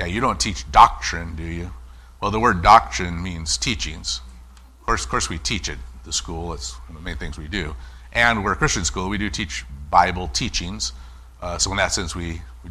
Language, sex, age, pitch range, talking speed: English, male, 50-69, 70-100 Hz, 220 wpm